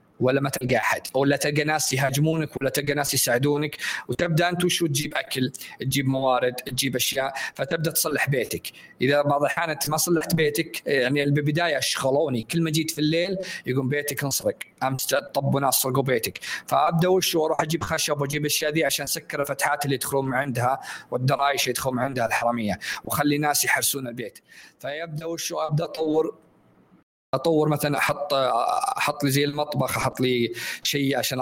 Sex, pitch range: male, 125-145 Hz